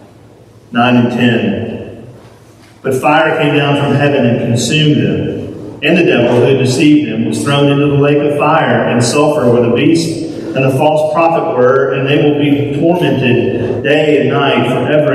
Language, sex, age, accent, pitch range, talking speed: English, male, 40-59, American, 130-185 Hz, 175 wpm